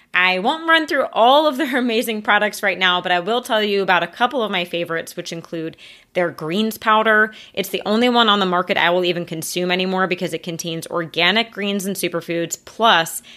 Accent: American